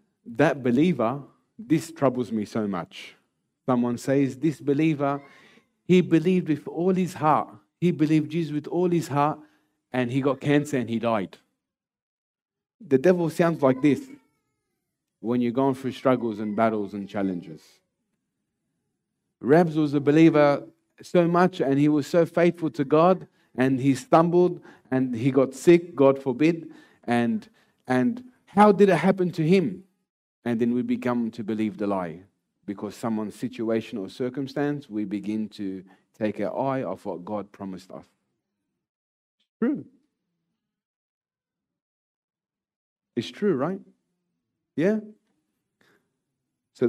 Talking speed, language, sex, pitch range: 135 wpm, English, male, 115-170 Hz